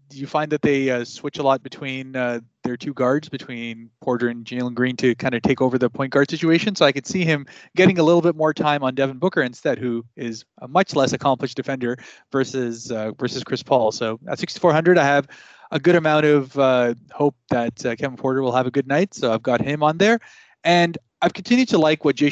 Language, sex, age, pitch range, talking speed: English, male, 20-39, 130-155 Hz, 235 wpm